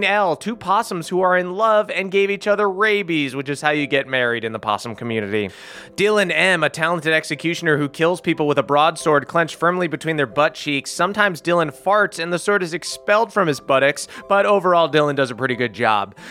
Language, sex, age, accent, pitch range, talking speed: English, male, 30-49, American, 145-175 Hz, 215 wpm